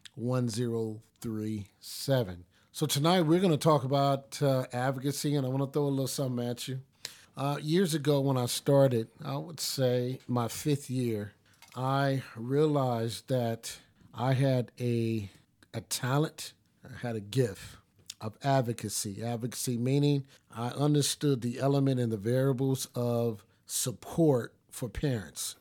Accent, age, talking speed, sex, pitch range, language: American, 50-69, 145 wpm, male, 115-140 Hz, English